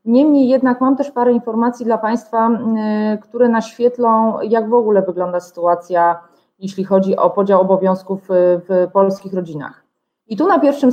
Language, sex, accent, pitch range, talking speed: Polish, female, native, 190-225 Hz, 150 wpm